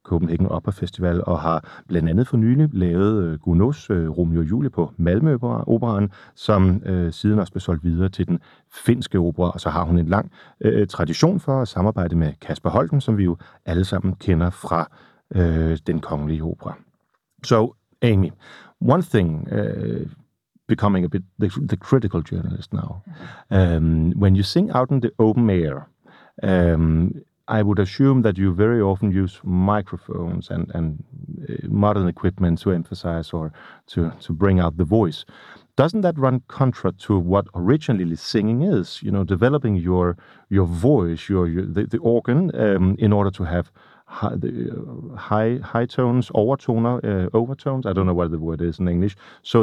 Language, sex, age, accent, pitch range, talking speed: Danish, male, 40-59, native, 85-110 Hz, 170 wpm